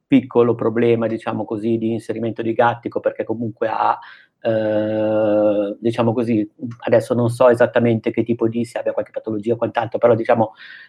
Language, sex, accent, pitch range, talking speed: Italian, male, native, 110-125 Hz, 165 wpm